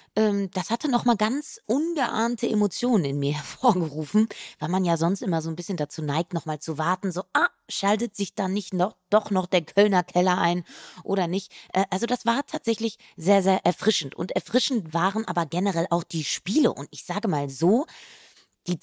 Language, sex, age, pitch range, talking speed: German, female, 20-39, 160-210 Hz, 190 wpm